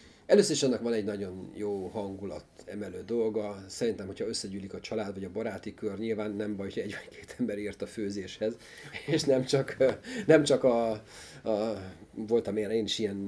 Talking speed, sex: 180 wpm, male